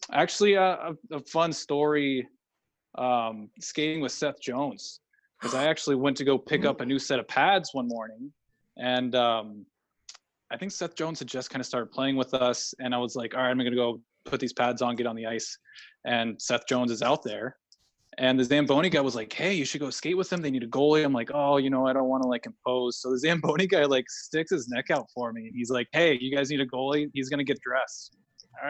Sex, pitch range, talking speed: male, 125-150 Hz, 240 wpm